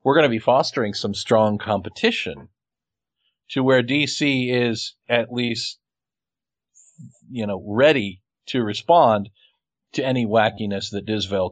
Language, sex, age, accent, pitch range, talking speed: English, male, 50-69, American, 115-145 Hz, 125 wpm